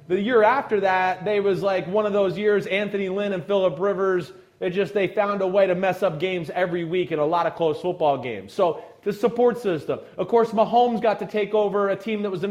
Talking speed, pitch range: 245 wpm, 190-235 Hz